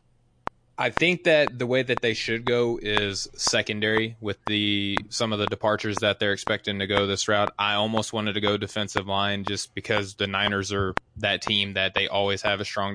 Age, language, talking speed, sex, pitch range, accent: 20-39, English, 205 wpm, male, 105-120 Hz, American